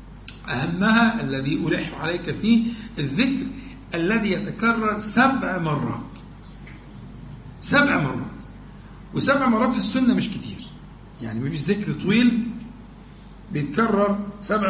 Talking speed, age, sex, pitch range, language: 100 wpm, 50-69, male, 165-225 Hz, Arabic